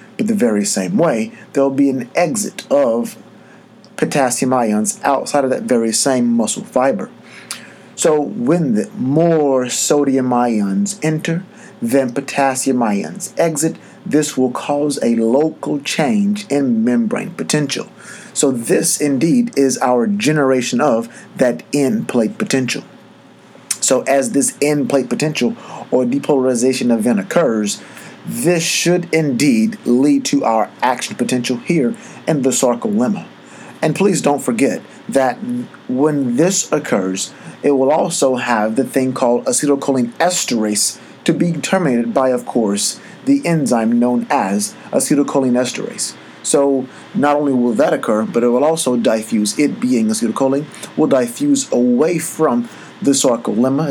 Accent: American